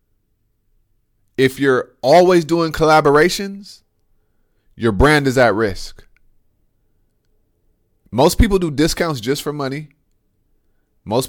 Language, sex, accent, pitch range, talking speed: English, male, American, 105-140 Hz, 95 wpm